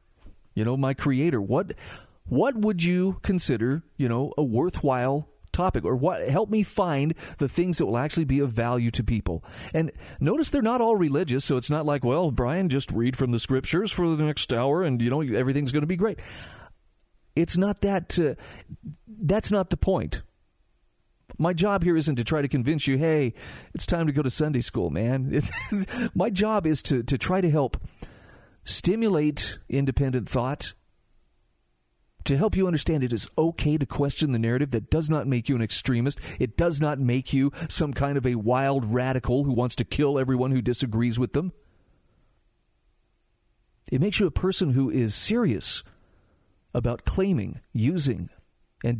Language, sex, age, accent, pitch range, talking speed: English, male, 40-59, American, 125-165 Hz, 180 wpm